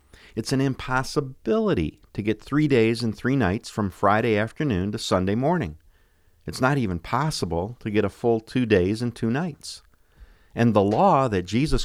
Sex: male